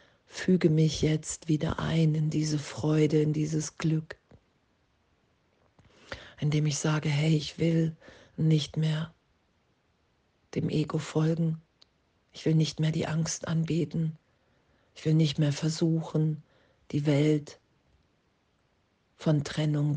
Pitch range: 150-160 Hz